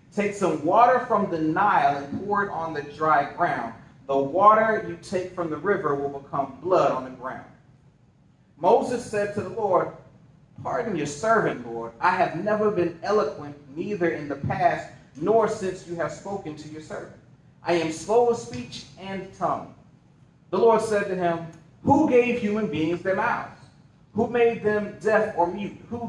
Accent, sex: American, male